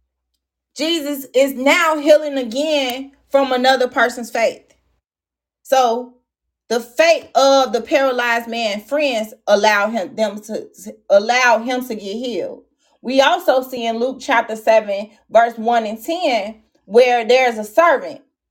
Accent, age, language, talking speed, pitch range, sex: American, 30-49, English, 135 wpm, 220-280 Hz, female